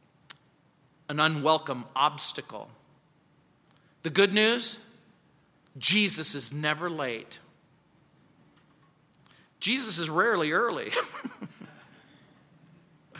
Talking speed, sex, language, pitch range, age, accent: 65 wpm, male, English, 160-245 Hz, 40-59, American